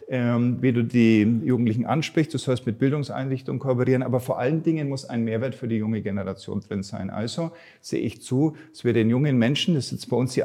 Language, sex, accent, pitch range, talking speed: German, male, German, 115-140 Hz, 220 wpm